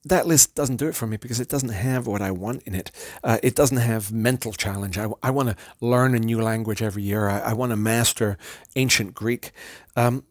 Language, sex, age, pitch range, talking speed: English, male, 40-59, 105-125 Hz, 235 wpm